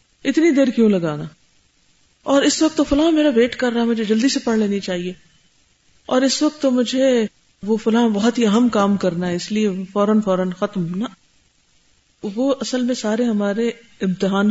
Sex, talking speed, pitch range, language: female, 185 wpm, 185-265 Hz, Urdu